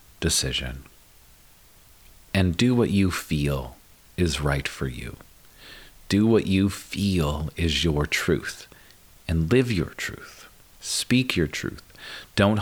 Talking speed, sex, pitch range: 120 wpm, male, 75-90 Hz